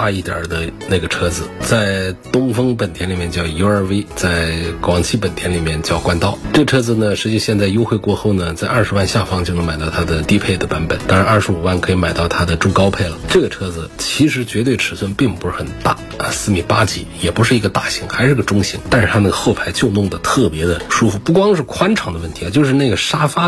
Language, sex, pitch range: Chinese, male, 90-115 Hz